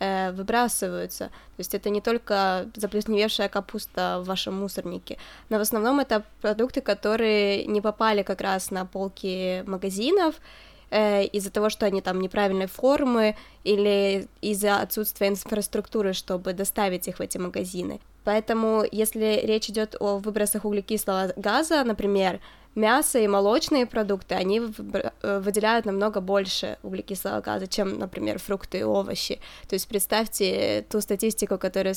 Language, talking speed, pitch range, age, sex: Ukrainian, 135 wpm, 190-215 Hz, 20-39, female